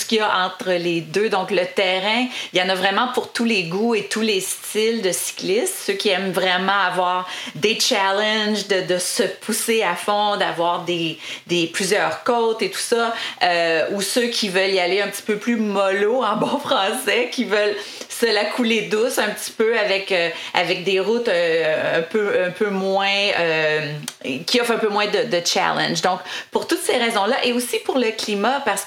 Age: 30-49